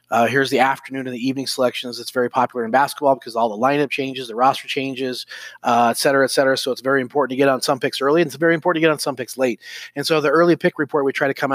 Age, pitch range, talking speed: 30-49, 125-155 Hz, 290 wpm